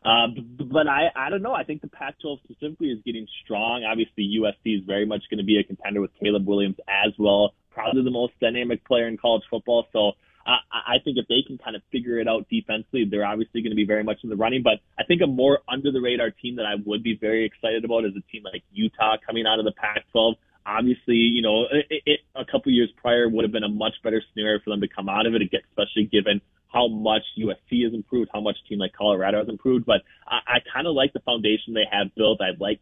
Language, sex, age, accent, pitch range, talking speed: English, male, 20-39, American, 105-120 Hz, 245 wpm